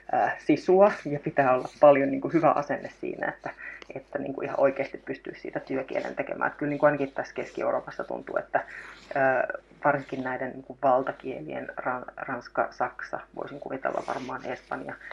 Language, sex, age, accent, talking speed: Finnish, female, 30-49, native, 120 wpm